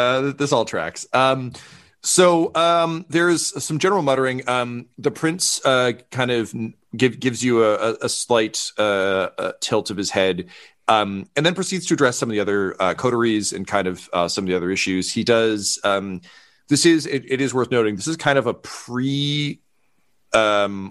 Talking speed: 185 wpm